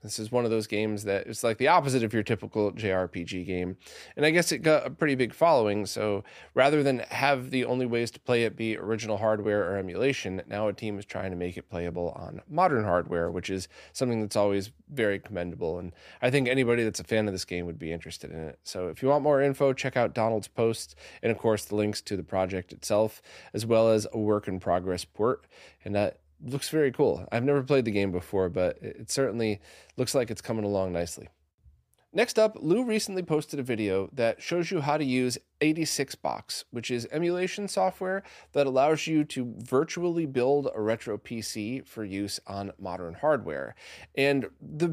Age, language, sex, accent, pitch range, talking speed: 20-39, English, male, American, 100-140 Hz, 205 wpm